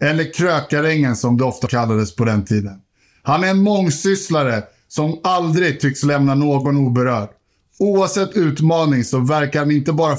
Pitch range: 130-165 Hz